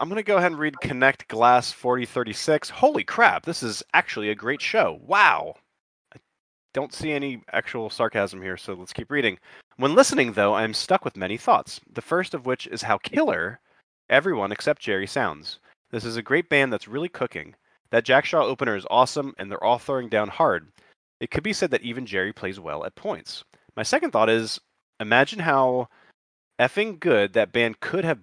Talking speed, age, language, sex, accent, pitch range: 200 wpm, 30-49, English, male, American, 105-135 Hz